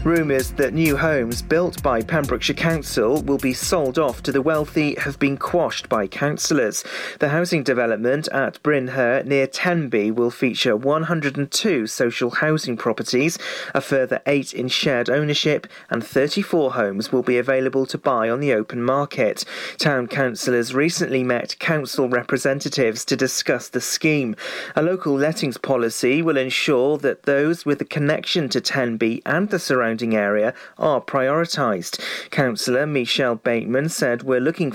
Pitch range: 125-160 Hz